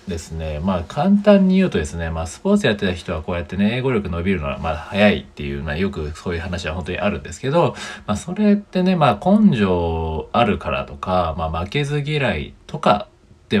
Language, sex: Japanese, male